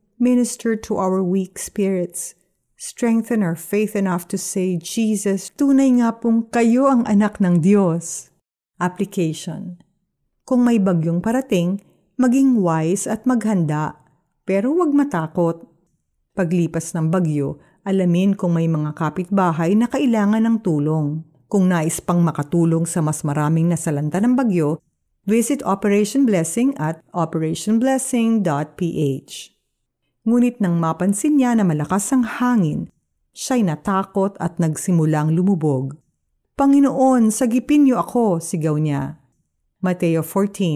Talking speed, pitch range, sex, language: 115 wpm, 165-225 Hz, female, Filipino